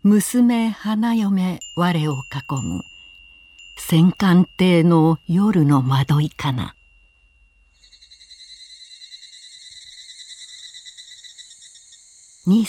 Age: 60-79